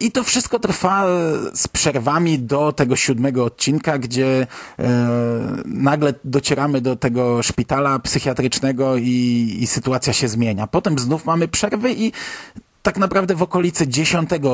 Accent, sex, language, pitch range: native, male, Polish, 120-150 Hz